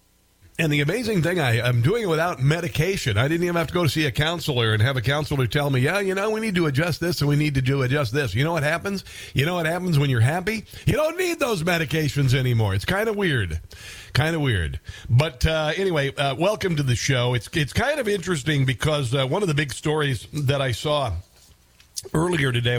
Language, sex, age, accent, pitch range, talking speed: English, male, 50-69, American, 130-165 Hz, 235 wpm